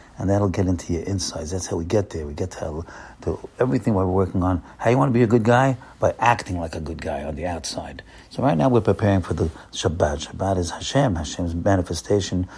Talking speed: 240 wpm